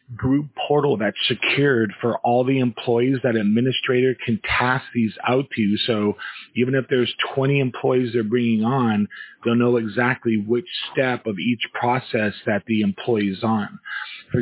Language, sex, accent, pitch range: English, male, American, 110-130 Hz